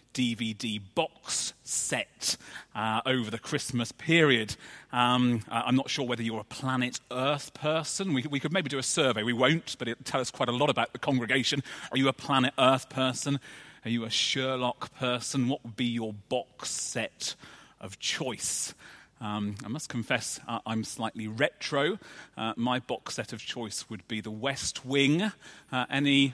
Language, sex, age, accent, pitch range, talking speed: English, male, 30-49, British, 125-155 Hz, 175 wpm